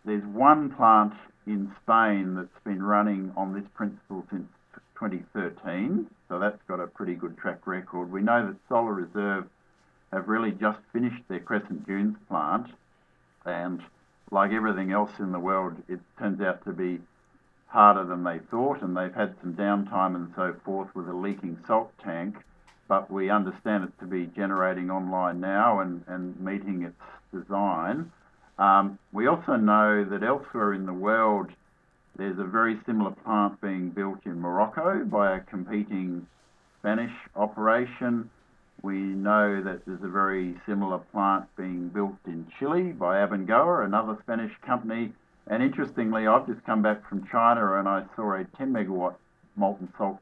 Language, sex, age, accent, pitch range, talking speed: English, male, 50-69, Australian, 95-105 Hz, 160 wpm